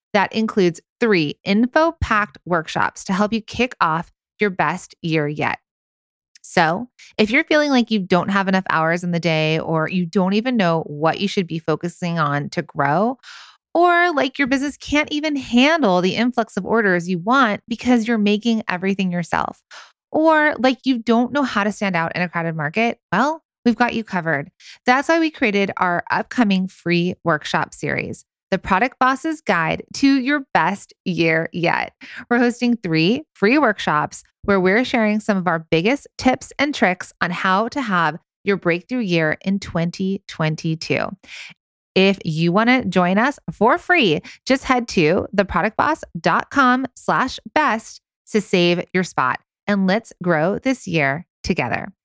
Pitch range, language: 175-250 Hz, English